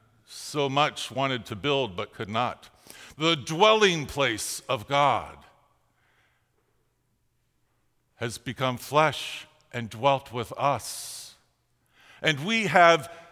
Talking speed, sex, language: 105 wpm, male, English